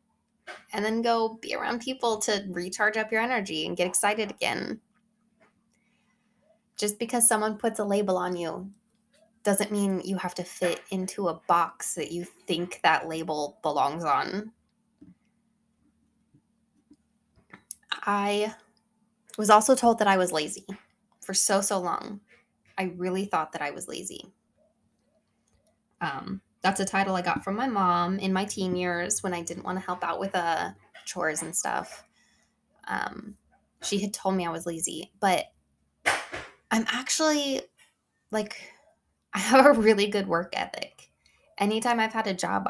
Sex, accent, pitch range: female, American, 185-220 Hz